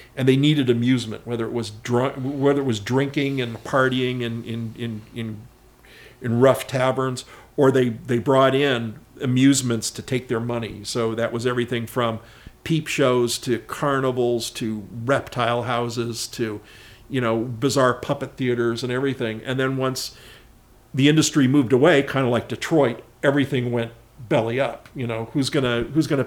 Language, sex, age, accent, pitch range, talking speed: English, male, 50-69, American, 115-135 Hz, 165 wpm